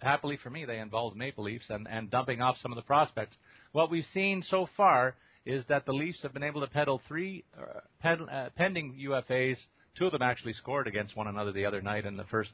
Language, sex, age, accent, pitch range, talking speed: English, male, 50-69, American, 115-160 Hz, 230 wpm